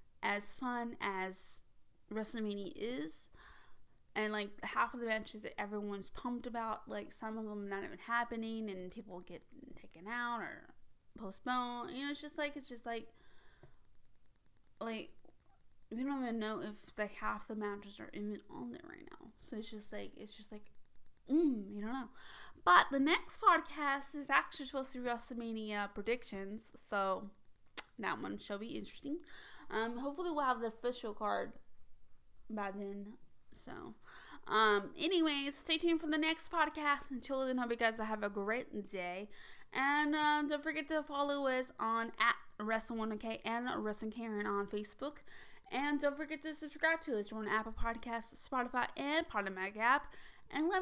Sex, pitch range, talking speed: female, 210-285 Hz, 165 wpm